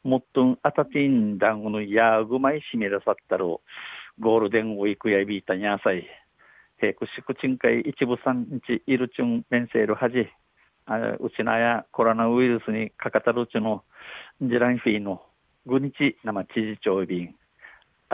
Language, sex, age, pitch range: Japanese, male, 50-69, 110-135 Hz